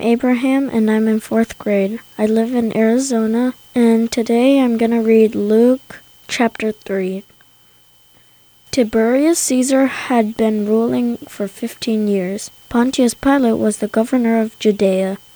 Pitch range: 210-240 Hz